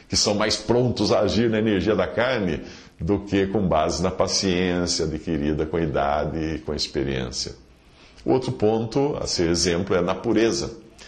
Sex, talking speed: male, 175 wpm